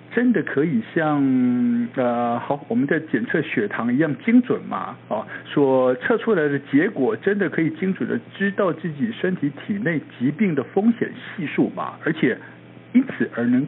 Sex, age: male, 60-79